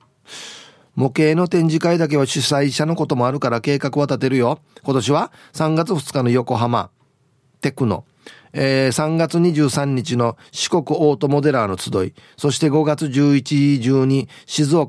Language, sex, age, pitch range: Japanese, male, 40-59, 120-160 Hz